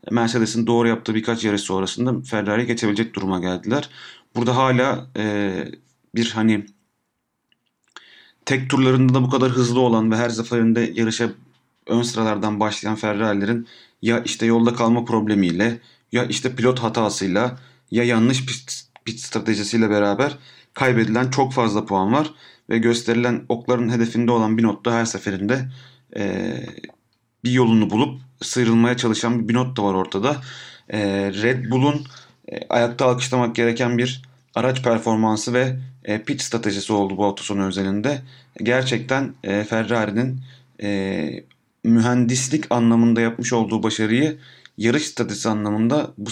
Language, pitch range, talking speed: Turkish, 110-125 Hz, 125 wpm